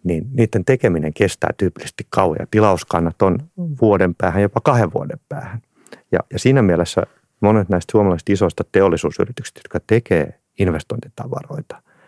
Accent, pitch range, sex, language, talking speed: native, 85-120 Hz, male, Finnish, 135 wpm